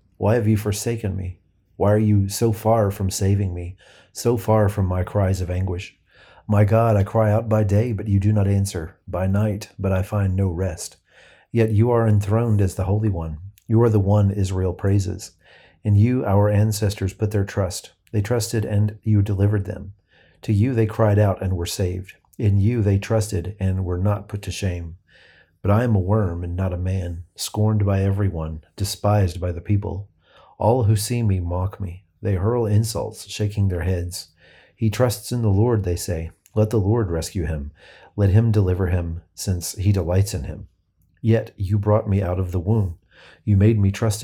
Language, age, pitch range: English, 40-59, 90-105 Hz